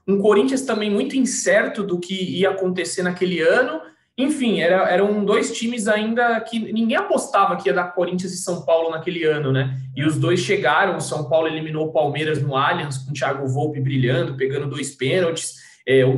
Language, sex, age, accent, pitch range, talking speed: Portuguese, male, 20-39, Brazilian, 155-200 Hz, 190 wpm